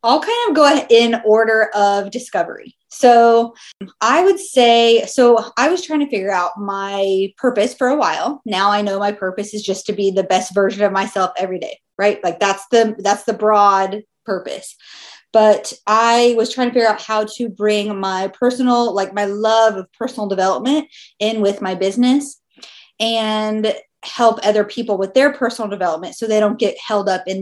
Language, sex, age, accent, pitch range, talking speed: English, female, 20-39, American, 195-240 Hz, 185 wpm